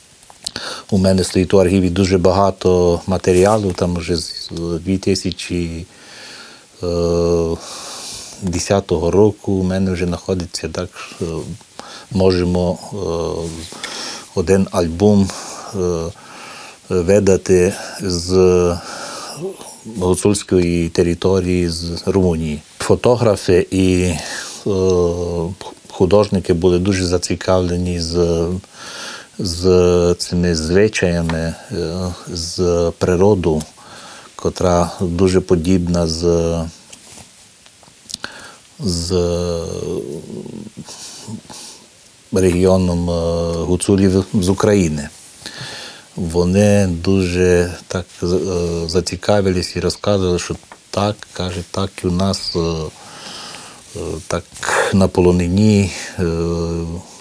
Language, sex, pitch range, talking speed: Ukrainian, male, 85-95 Hz, 65 wpm